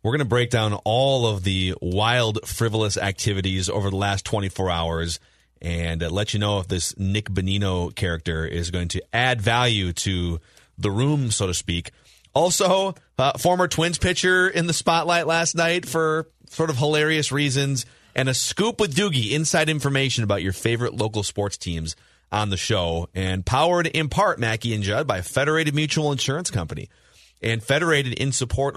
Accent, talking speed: American, 175 wpm